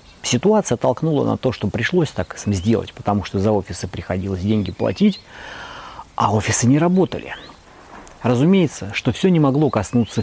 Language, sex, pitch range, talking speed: Russian, male, 105-135 Hz, 145 wpm